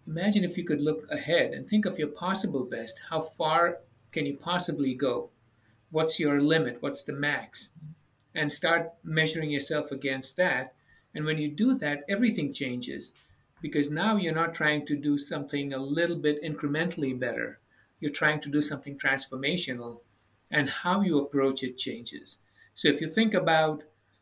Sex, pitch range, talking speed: male, 140-165 Hz, 165 wpm